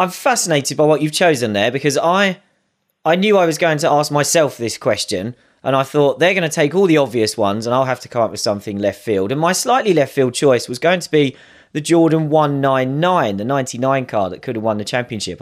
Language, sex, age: English, male, 30-49